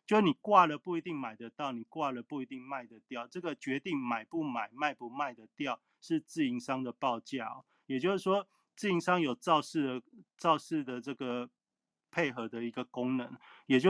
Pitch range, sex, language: 125-180 Hz, male, Chinese